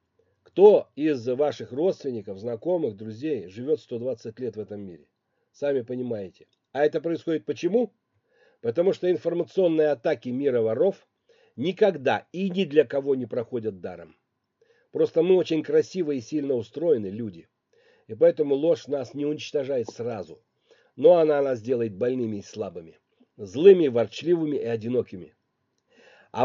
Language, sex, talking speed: Russian, male, 135 wpm